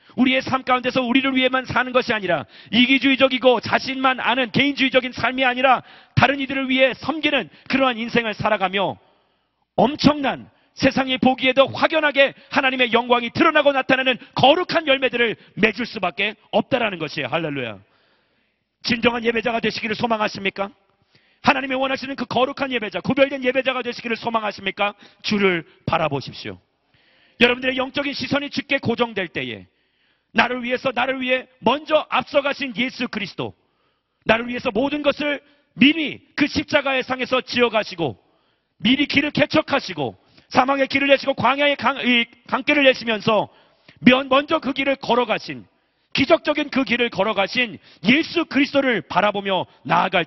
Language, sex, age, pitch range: Korean, male, 40-59, 210-270 Hz